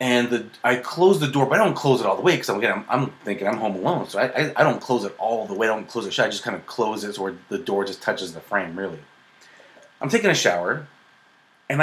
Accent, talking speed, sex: American, 285 wpm, male